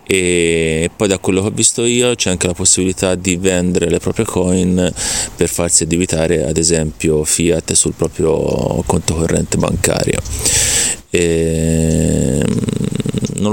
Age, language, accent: 30-49, Italian, native